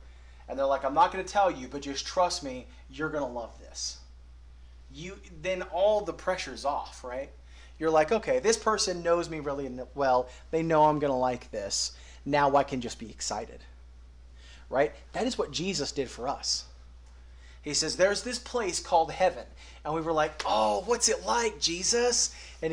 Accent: American